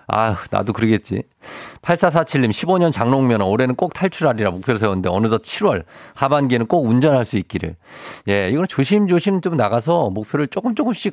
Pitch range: 100-145 Hz